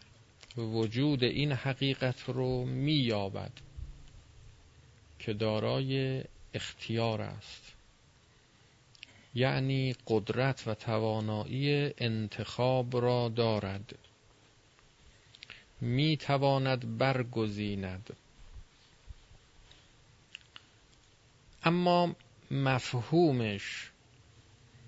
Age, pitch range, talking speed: 40-59, 110-135 Hz, 50 wpm